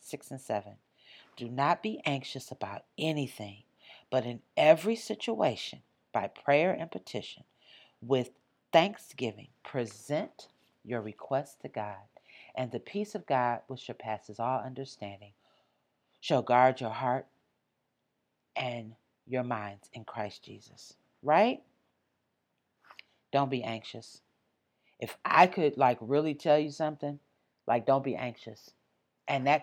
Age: 40-59